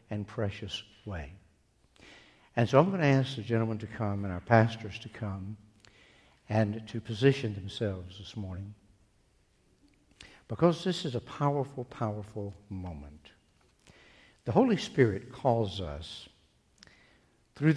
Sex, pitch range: male, 100-125 Hz